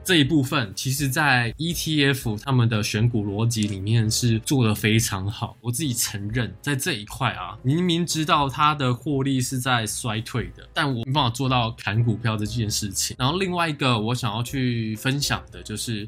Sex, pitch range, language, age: male, 110-135 Hz, Chinese, 20-39